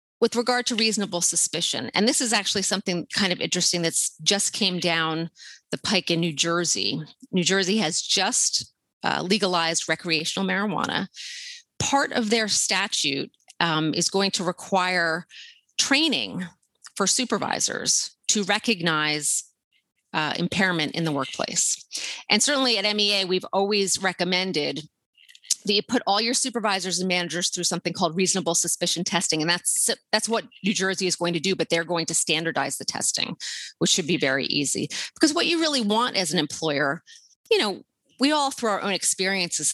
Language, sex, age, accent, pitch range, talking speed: English, female, 30-49, American, 170-220 Hz, 160 wpm